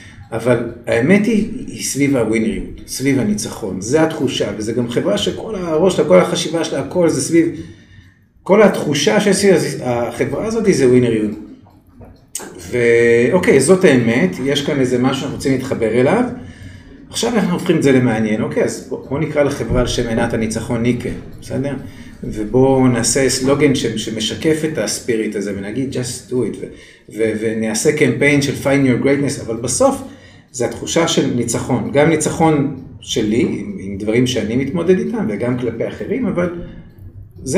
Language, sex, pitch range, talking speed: Hebrew, male, 115-175 Hz, 160 wpm